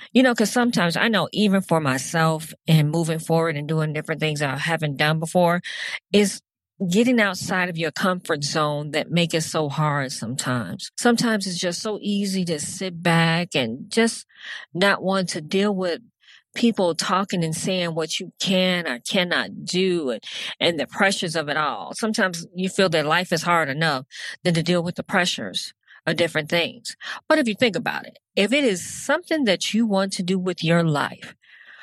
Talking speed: 185 wpm